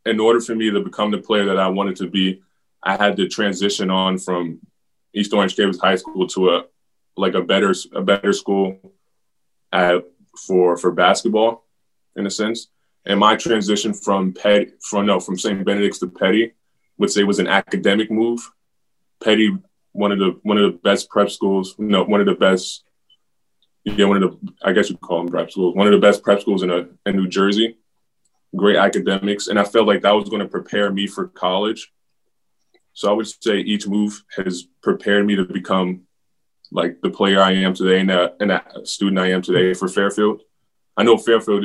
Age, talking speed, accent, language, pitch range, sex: 20-39, 195 wpm, American, English, 90-105 Hz, male